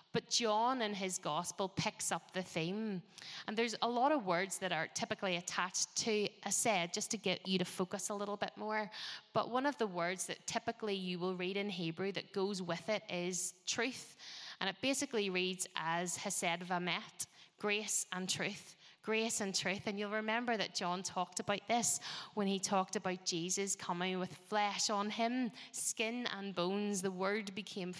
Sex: female